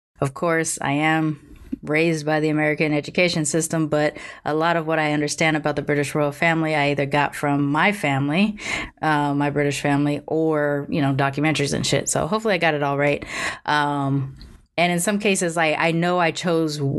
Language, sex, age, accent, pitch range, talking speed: English, female, 20-39, American, 140-160 Hz, 195 wpm